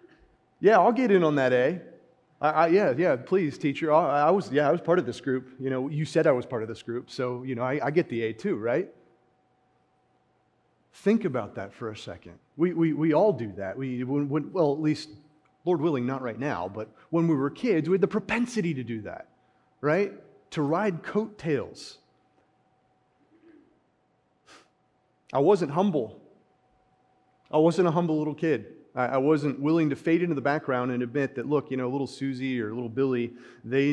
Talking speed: 190 wpm